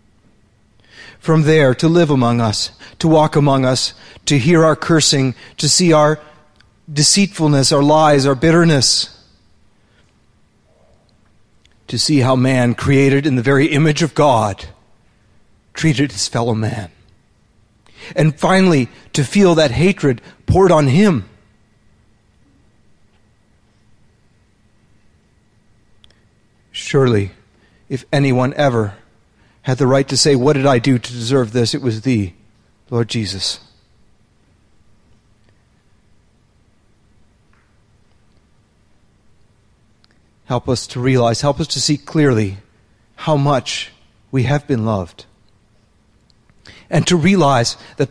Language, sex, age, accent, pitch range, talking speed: English, male, 40-59, American, 105-140 Hz, 105 wpm